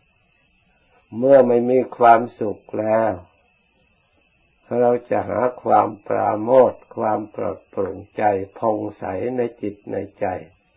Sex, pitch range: male, 100-120 Hz